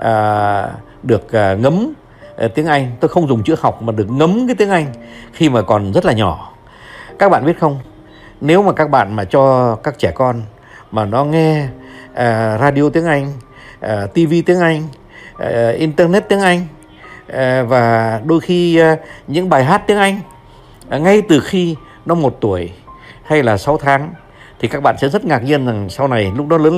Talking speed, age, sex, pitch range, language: 195 wpm, 60-79, male, 115-155 Hz, Vietnamese